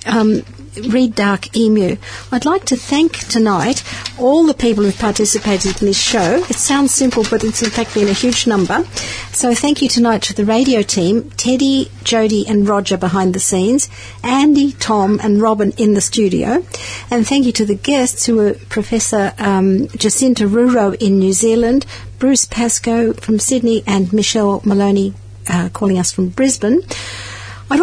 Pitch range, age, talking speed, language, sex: 195-235 Hz, 50-69, 170 wpm, English, female